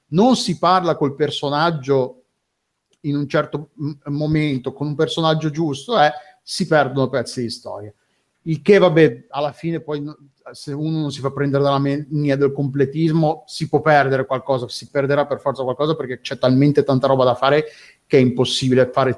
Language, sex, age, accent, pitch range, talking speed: Italian, male, 30-49, native, 135-160 Hz, 170 wpm